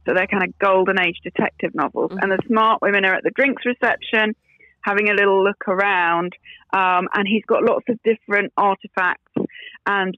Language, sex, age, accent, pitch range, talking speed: English, female, 30-49, British, 180-235 Hz, 185 wpm